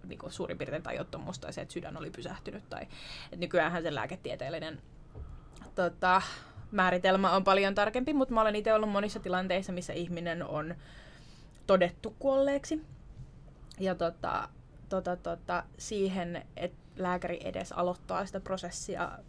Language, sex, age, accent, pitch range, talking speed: Finnish, female, 20-39, native, 170-205 Hz, 130 wpm